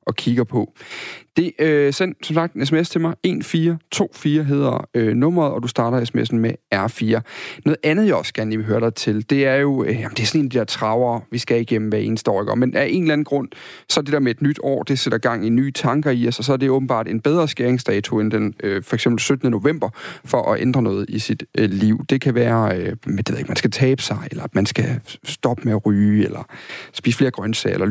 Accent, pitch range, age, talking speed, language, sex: native, 115-145 Hz, 40-59, 255 wpm, Danish, male